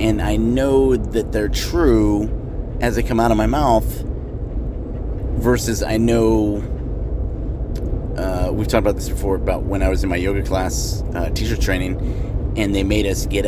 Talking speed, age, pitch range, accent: 170 wpm, 30-49, 80-110 Hz, American